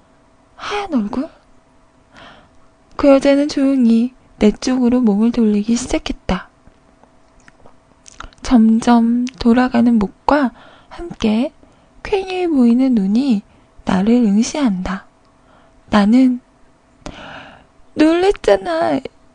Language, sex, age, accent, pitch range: Korean, female, 20-39, native, 230-305 Hz